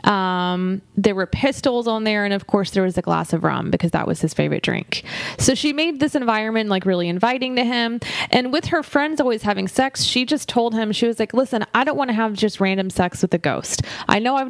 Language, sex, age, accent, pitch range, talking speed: English, female, 20-39, American, 190-235 Hz, 250 wpm